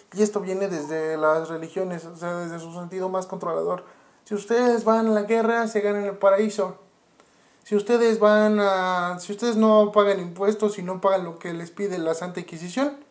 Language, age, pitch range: Spanish, 20-39, 170-205 Hz